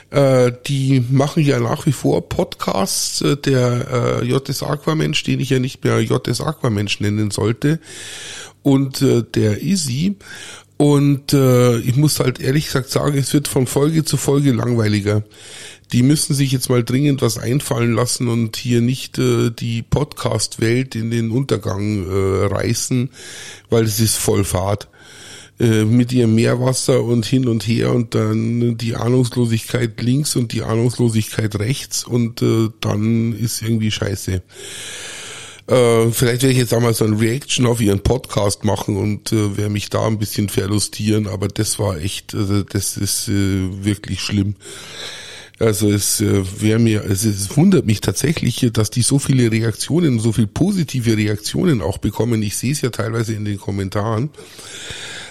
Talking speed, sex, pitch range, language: 145 wpm, male, 105-130 Hz, German